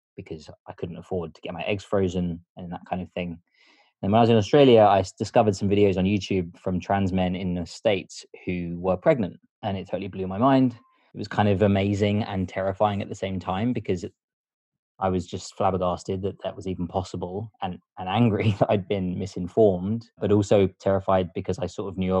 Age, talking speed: 20-39, 210 wpm